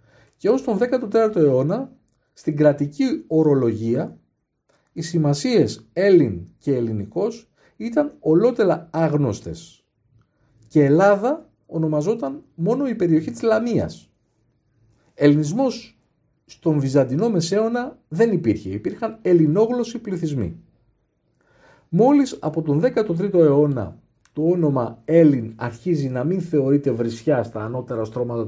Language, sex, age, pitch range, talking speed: Greek, male, 50-69, 115-190 Hz, 105 wpm